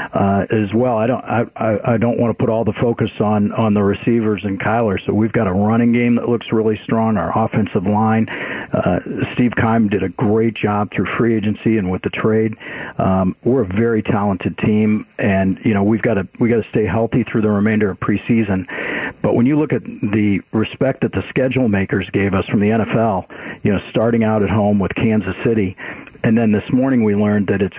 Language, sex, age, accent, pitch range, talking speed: English, male, 50-69, American, 100-115 Hz, 220 wpm